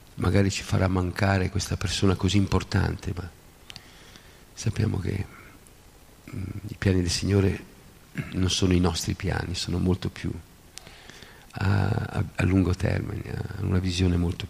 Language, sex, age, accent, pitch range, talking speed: Italian, male, 50-69, native, 90-105 Hz, 135 wpm